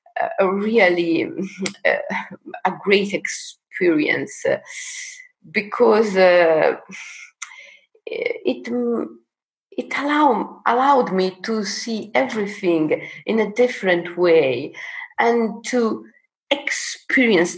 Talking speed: 80 wpm